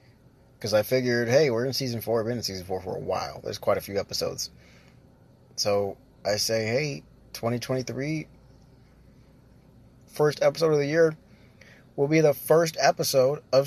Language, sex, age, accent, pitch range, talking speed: English, male, 20-39, American, 110-135 Hz, 160 wpm